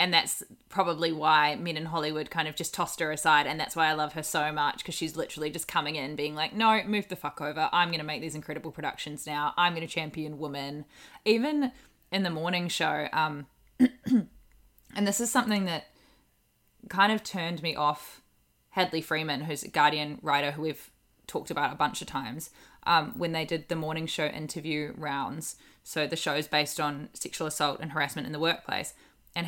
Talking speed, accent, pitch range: 195 wpm, Australian, 150-175 Hz